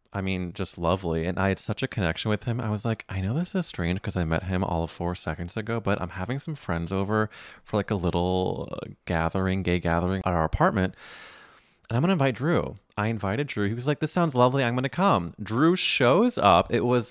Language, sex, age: English, male, 20-39